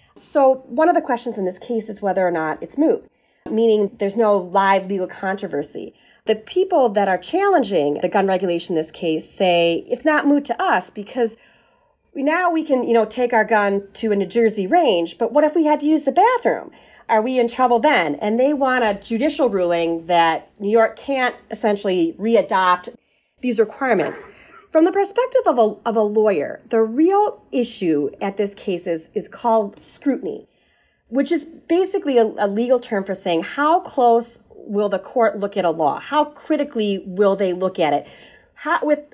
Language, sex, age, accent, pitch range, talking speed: English, female, 30-49, American, 195-270 Hz, 190 wpm